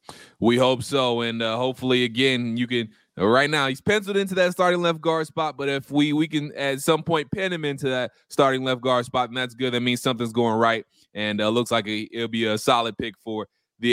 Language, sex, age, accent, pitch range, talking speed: English, male, 20-39, American, 125-150 Hz, 235 wpm